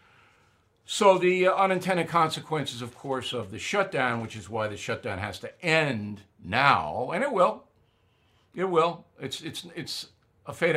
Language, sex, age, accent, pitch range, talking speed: English, male, 60-79, American, 110-150 Hz, 155 wpm